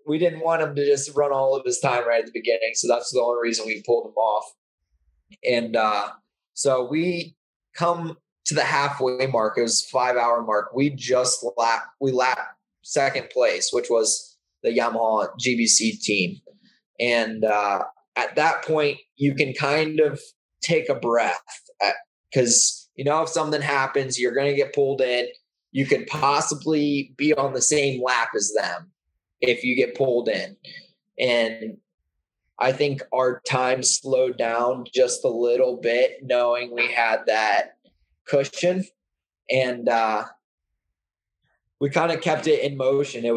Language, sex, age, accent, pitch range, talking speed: English, male, 20-39, American, 120-150 Hz, 160 wpm